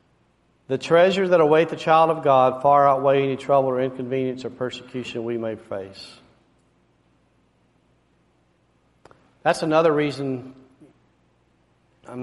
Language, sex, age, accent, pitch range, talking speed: English, male, 40-59, American, 130-165 Hz, 115 wpm